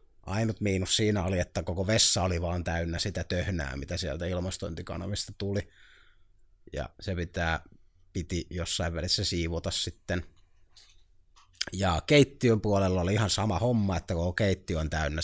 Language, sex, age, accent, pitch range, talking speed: Finnish, male, 30-49, native, 85-100 Hz, 140 wpm